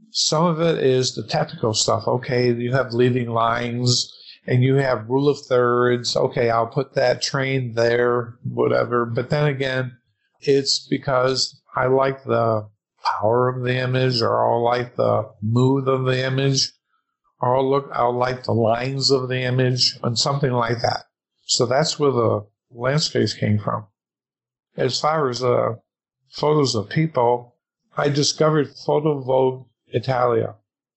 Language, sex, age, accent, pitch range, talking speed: English, male, 50-69, American, 120-140 Hz, 150 wpm